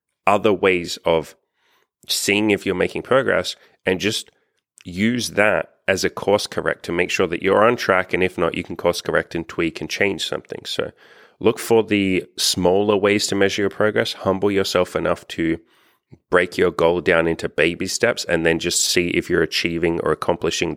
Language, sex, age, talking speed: English, male, 30-49, 190 wpm